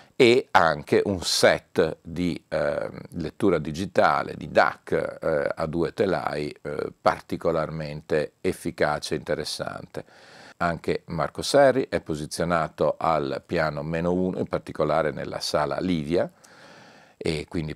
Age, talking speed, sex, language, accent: 50-69, 120 wpm, male, Italian, native